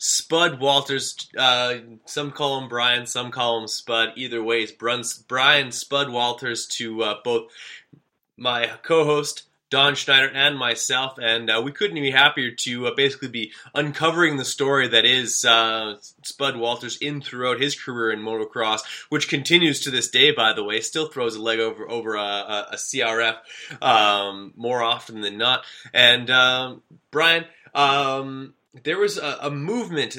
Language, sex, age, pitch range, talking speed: English, male, 20-39, 115-140 Hz, 160 wpm